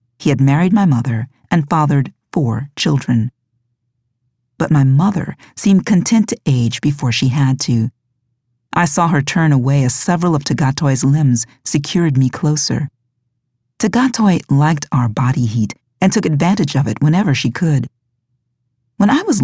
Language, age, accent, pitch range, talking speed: English, 40-59, American, 125-170 Hz, 150 wpm